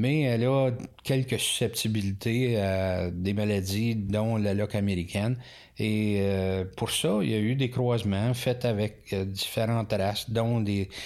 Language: French